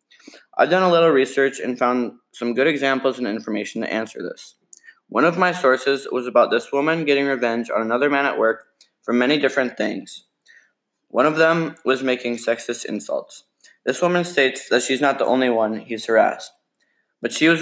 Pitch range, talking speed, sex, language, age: 115-140 Hz, 185 wpm, male, English, 20-39